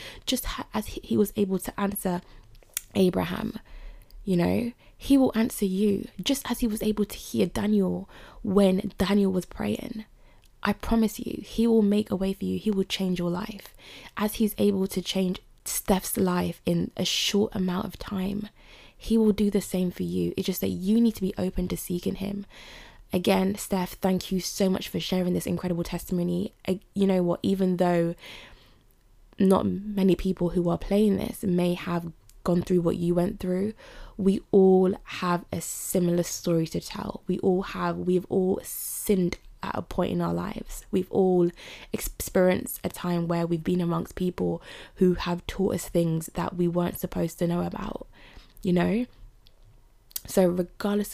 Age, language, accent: 20-39, English, British